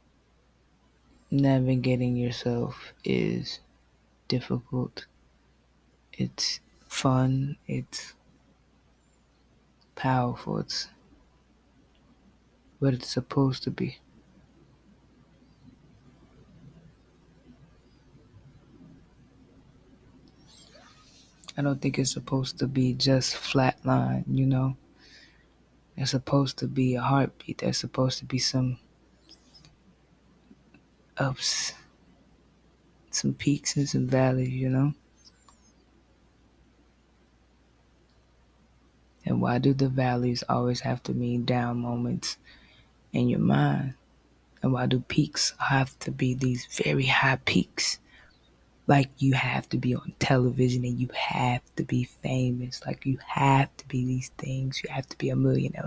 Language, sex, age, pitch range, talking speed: English, female, 20-39, 120-135 Hz, 100 wpm